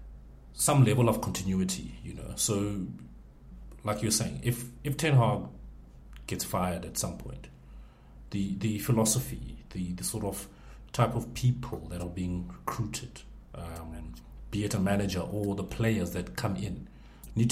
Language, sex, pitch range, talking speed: English, male, 85-120 Hz, 160 wpm